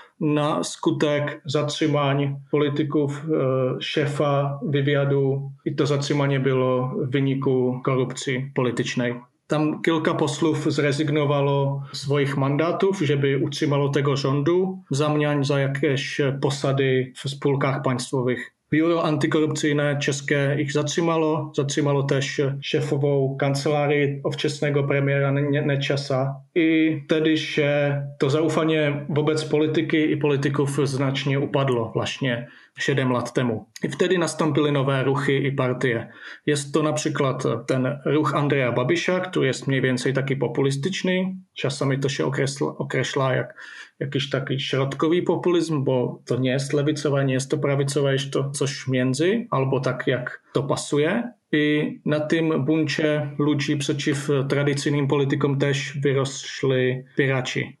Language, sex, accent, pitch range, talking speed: Polish, male, Czech, 135-150 Hz, 120 wpm